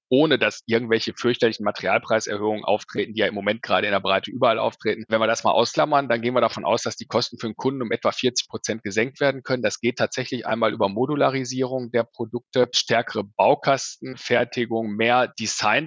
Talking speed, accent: 195 wpm, German